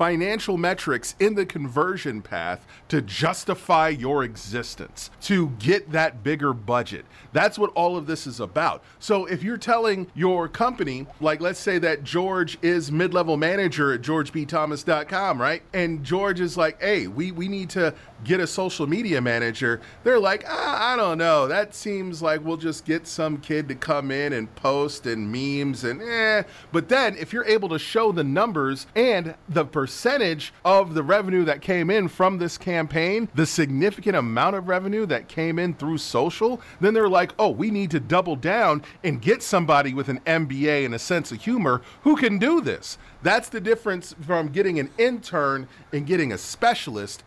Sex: male